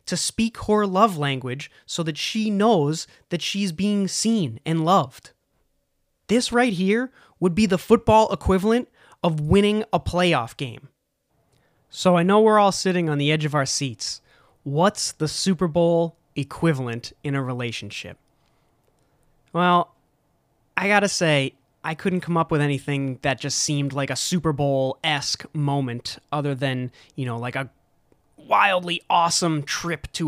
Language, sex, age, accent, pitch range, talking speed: English, male, 20-39, American, 135-180 Hz, 150 wpm